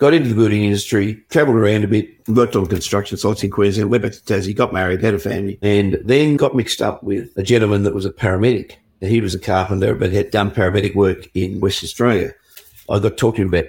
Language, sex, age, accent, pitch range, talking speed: English, male, 60-79, Australian, 95-110 Hz, 230 wpm